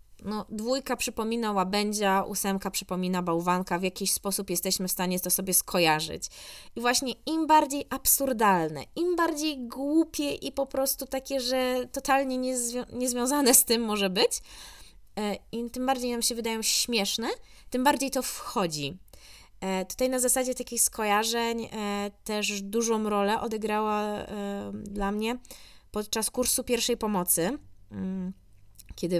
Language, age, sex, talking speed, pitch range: Polish, 20-39, female, 130 wpm, 180-245 Hz